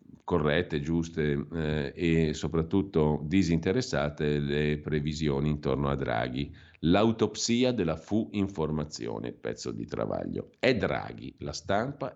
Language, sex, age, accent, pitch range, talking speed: Italian, male, 50-69, native, 75-90 Hz, 105 wpm